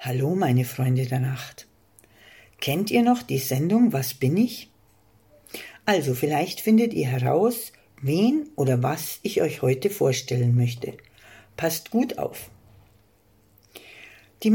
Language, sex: German, female